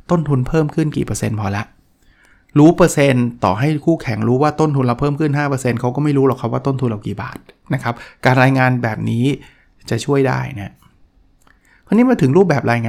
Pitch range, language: 115-145 Hz, Thai